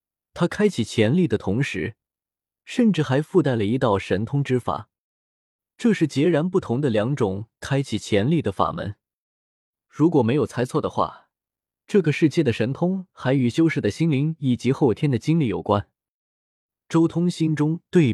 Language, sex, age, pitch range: Chinese, male, 20-39, 110-160 Hz